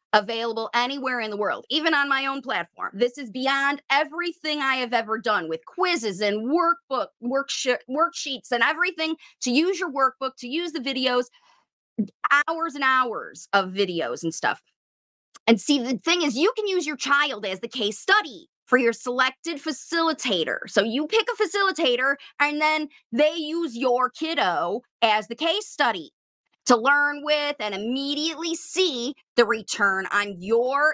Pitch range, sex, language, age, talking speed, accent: 235-310 Hz, female, English, 30-49, 160 wpm, American